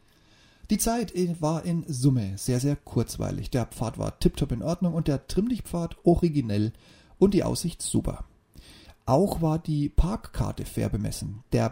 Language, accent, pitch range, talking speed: German, German, 115-160 Hz, 155 wpm